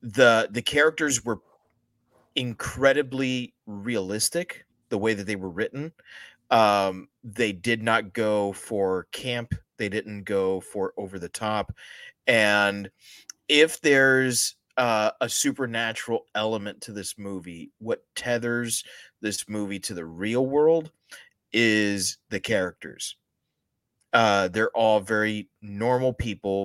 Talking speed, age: 120 wpm, 30-49